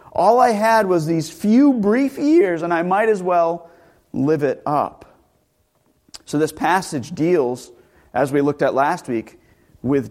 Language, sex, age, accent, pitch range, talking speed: English, male, 40-59, American, 135-185 Hz, 160 wpm